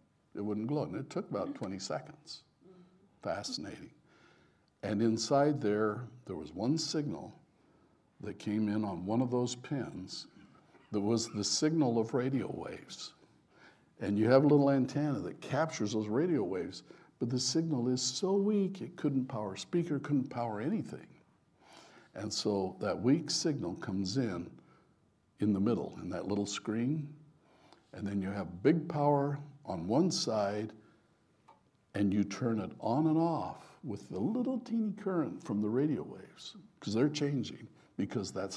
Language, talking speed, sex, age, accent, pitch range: English, 155 wpm, male, 60-79, American, 105-155 Hz